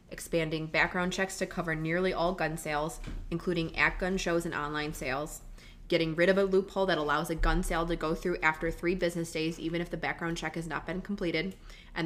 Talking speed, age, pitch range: 215 wpm, 20-39, 160-180 Hz